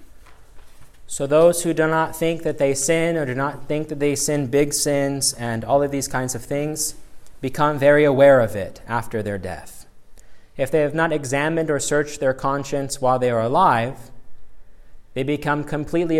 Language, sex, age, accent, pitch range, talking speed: English, male, 30-49, American, 115-145 Hz, 180 wpm